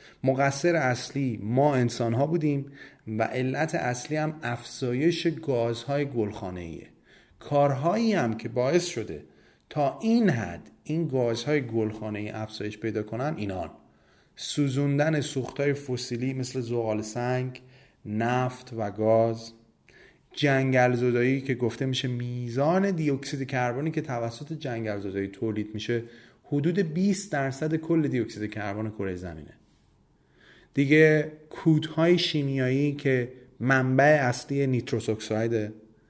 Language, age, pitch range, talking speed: Persian, 30-49, 115-145 Hz, 110 wpm